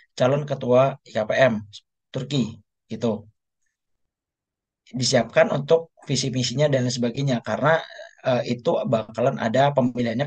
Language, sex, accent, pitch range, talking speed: Indonesian, male, native, 120-145 Hz, 95 wpm